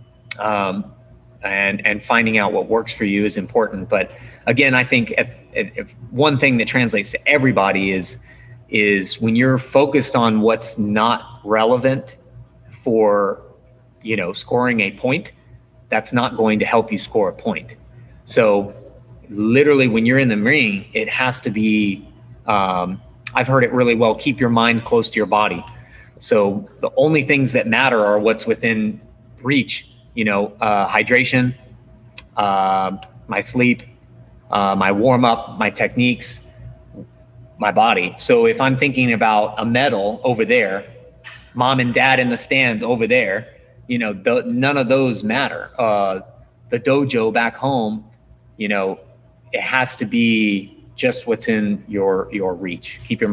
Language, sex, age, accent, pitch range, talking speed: English, male, 30-49, American, 105-125 Hz, 155 wpm